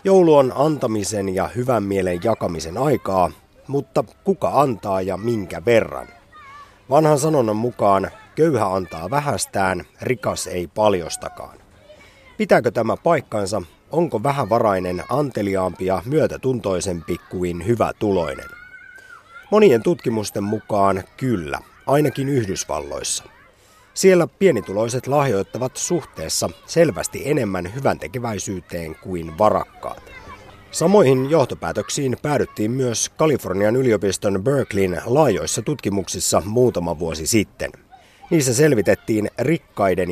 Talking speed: 95 wpm